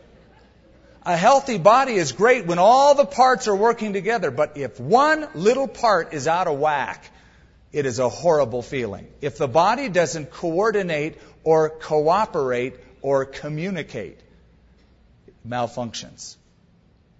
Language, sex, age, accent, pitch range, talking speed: English, male, 50-69, American, 130-180 Hz, 130 wpm